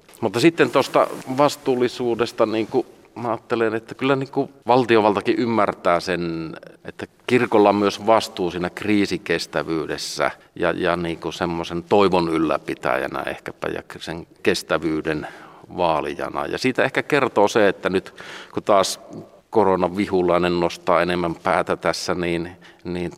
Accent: native